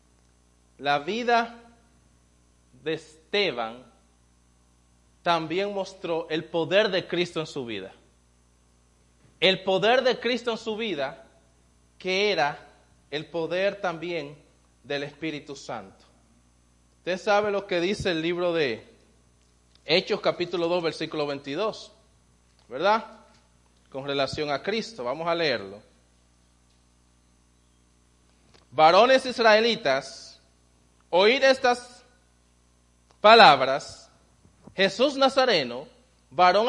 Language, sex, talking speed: English, male, 95 wpm